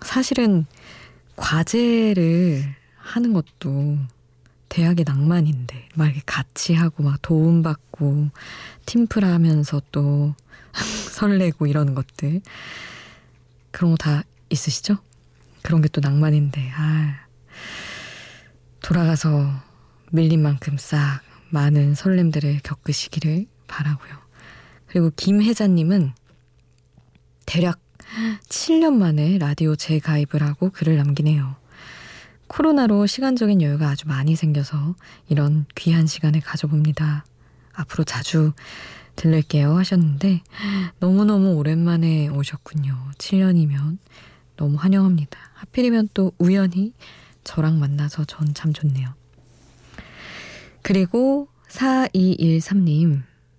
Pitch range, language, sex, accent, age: 145-175 Hz, Korean, female, native, 20-39